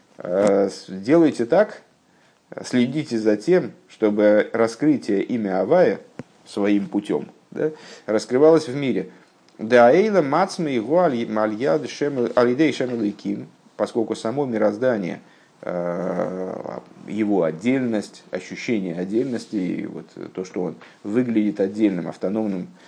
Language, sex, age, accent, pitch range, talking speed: Russian, male, 50-69, native, 100-135 Hz, 80 wpm